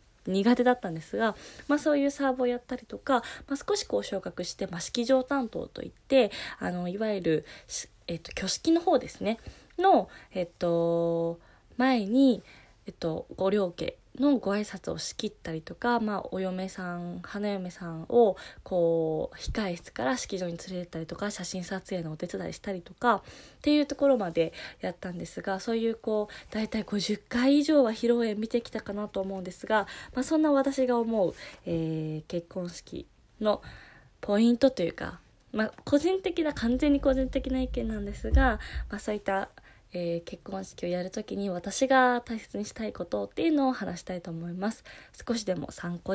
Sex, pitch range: female, 180-250 Hz